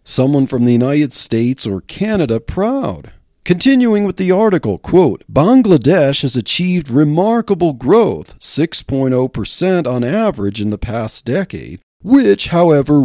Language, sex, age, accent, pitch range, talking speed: English, male, 40-59, American, 125-210 Hz, 125 wpm